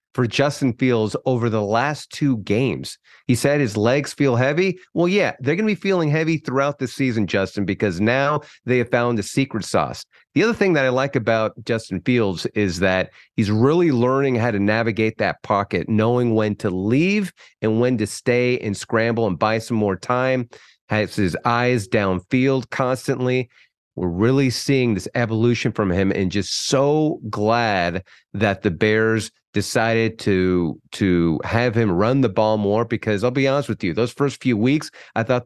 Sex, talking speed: male, 180 wpm